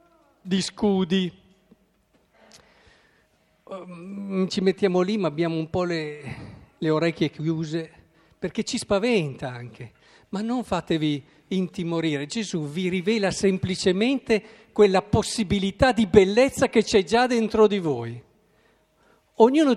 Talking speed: 110 wpm